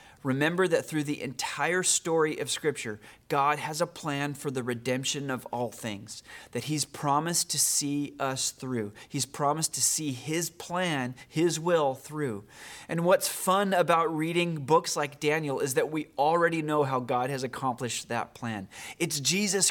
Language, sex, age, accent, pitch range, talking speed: English, male, 30-49, American, 135-175 Hz, 165 wpm